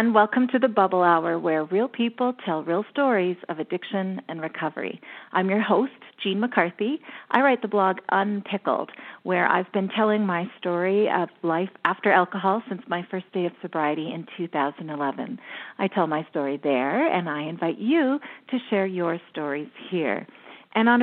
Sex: female